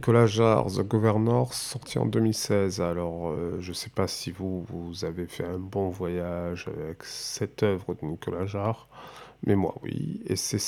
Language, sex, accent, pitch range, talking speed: French, male, French, 90-115 Hz, 180 wpm